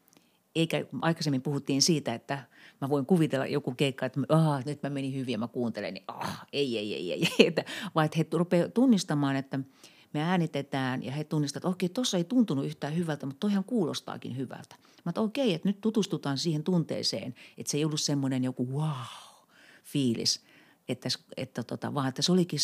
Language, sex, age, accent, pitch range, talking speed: Finnish, female, 40-59, native, 135-170 Hz, 180 wpm